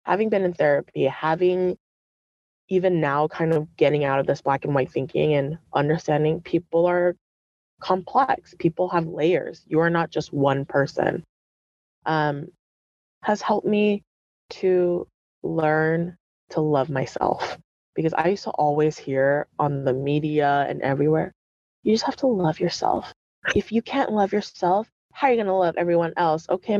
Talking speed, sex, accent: 160 wpm, female, American